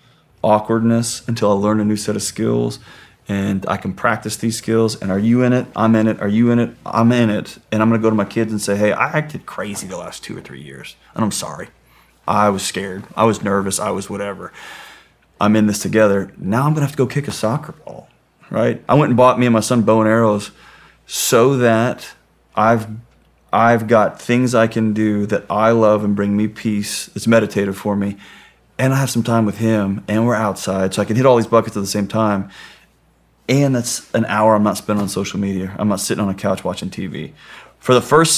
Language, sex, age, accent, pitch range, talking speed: English, male, 30-49, American, 100-120 Hz, 235 wpm